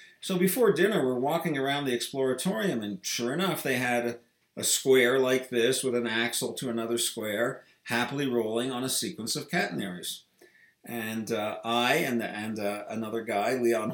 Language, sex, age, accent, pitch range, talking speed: English, male, 50-69, American, 115-145 Hz, 170 wpm